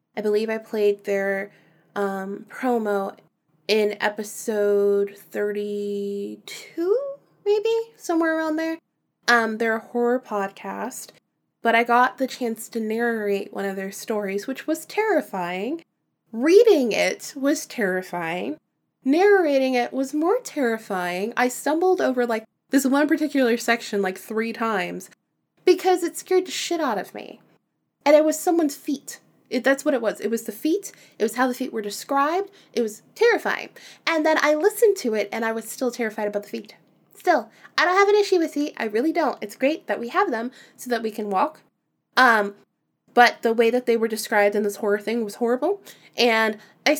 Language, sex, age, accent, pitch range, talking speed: English, female, 20-39, American, 205-300 Hz, 170 wpm